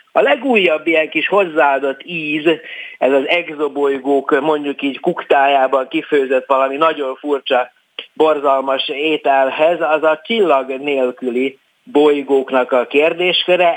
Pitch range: 135-170 Hz